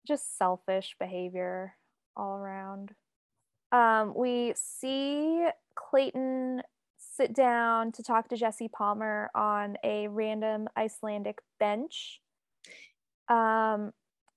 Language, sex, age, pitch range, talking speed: English, female, 10-29, 205-240 Hz, 90 wpm